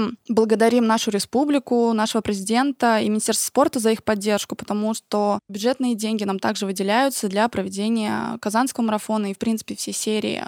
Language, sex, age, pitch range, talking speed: Russian, female, 20-39, 210-245 Hz, 155 wpm